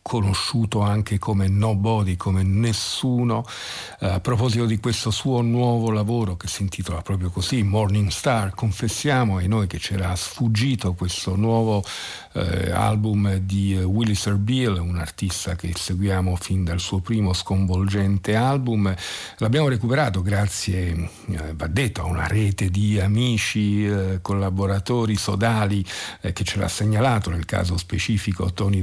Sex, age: male, 50-69